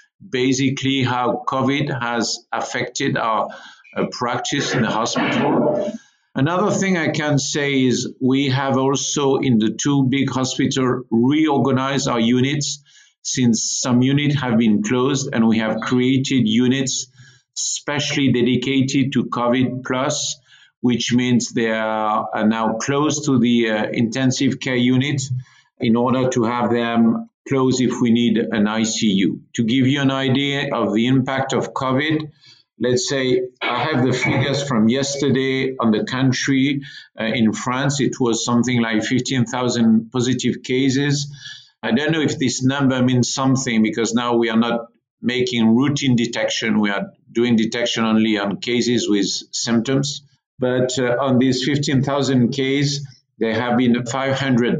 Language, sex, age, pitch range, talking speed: English, male, 50-69, 120-135 Hz, 145 wpm